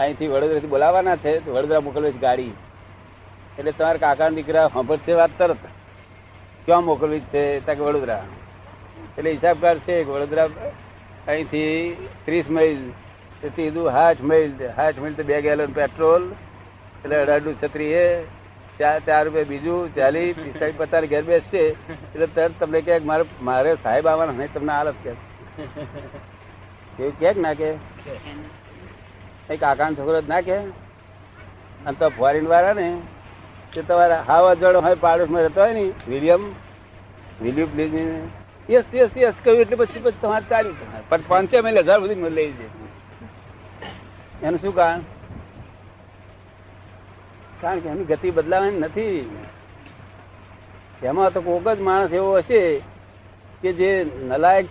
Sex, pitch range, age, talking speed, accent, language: male, 105-170 Hz, 60-79, 55 wpm, native, Gujarati